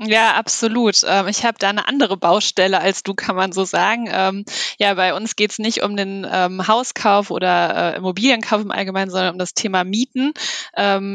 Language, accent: German, German